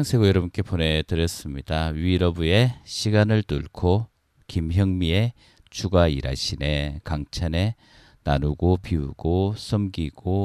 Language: Korean